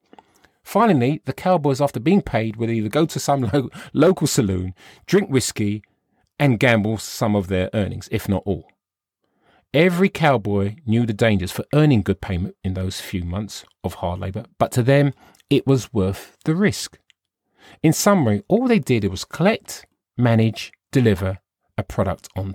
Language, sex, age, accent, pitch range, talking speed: English, male, 40-59, British, 100-155 Hz, 160 wpm